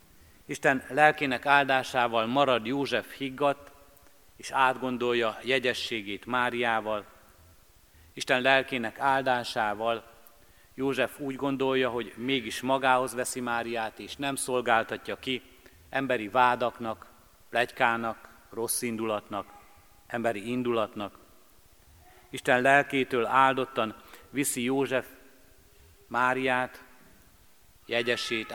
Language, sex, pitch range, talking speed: Hungarian, male, 105-130 Hz, 80 wpm